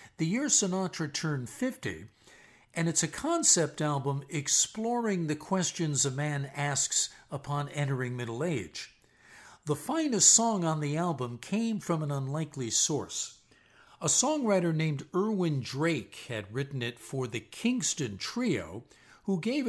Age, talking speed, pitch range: 60-79, 135 wpm, 125-175 Hz